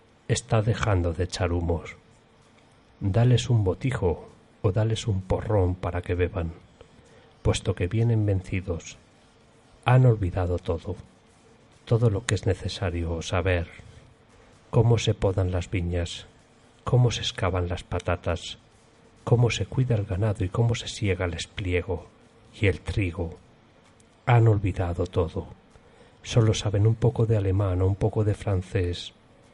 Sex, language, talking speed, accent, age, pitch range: male, Spanish, 135 wpm, Spanish, 40-59, 90-115 Hz